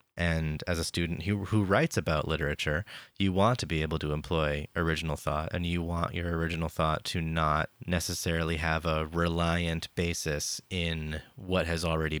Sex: male